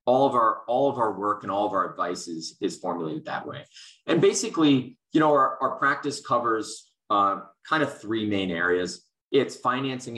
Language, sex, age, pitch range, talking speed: English, male, 30-49, 95-125 Hz, 195 wpm